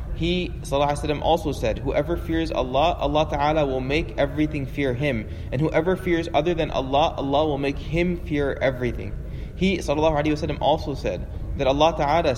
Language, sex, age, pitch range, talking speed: English, male, 20-39, 125-155 Hz, 175 wpm